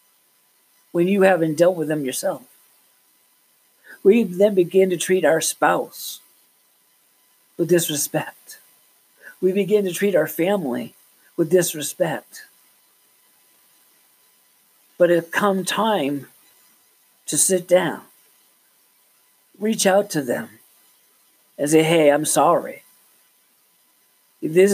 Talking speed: 100 wpm